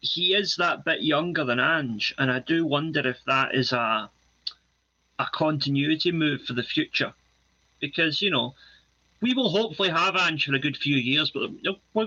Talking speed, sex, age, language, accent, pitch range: 180 wpm, male, 30-49, English, British, 125-155 Hz